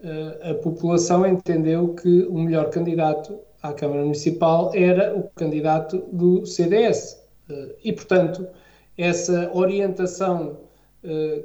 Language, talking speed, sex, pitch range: Portuguese, 100 wpm, male, 165-195 Hz